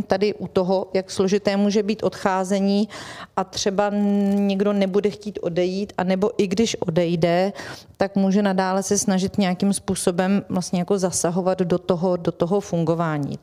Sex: female